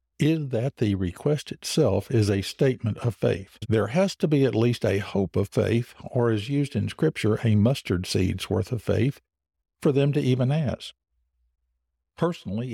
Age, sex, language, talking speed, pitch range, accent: 60-79, male, English, 175 wpm, 95-120 Hz, American